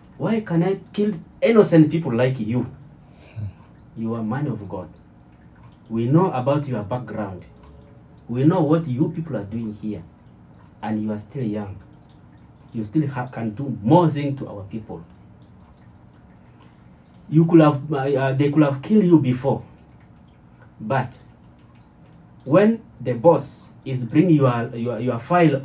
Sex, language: male, English